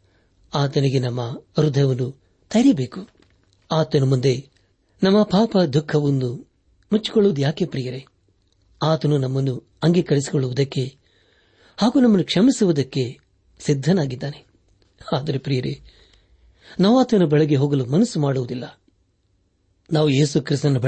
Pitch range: 100-160 Hz